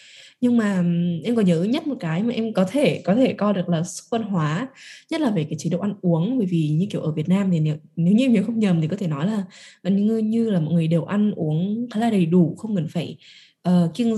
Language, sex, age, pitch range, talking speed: Vietnamese, female, 10-29, 175-235 Hz, 270 wpm